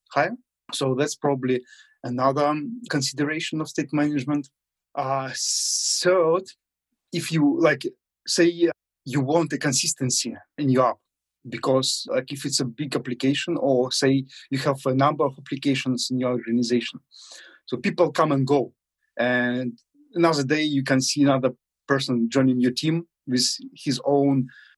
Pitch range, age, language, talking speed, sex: 130-150 Hz, 30-49, English, 140 wpm, male